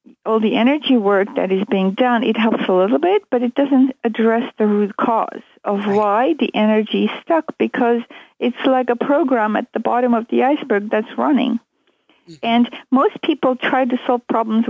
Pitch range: 225-275 Hz